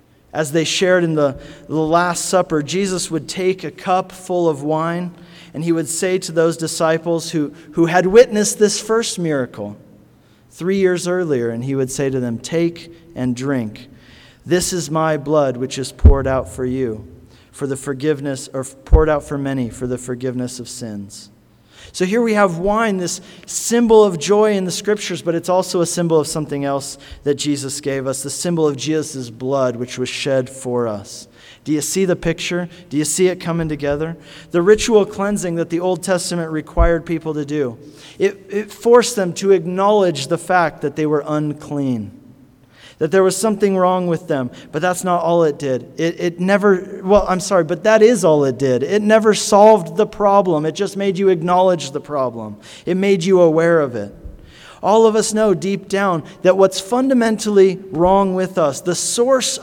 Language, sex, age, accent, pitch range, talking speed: English, male, 40-59, American, 140-190 Hz, 190 wpm